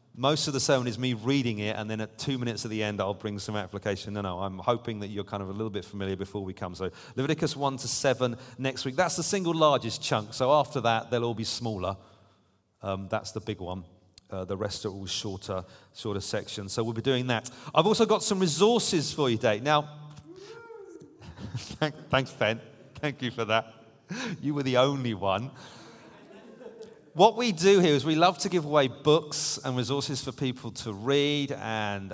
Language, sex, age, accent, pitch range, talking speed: English, male, 40-59, British, 110-150 Hz, 205 wpm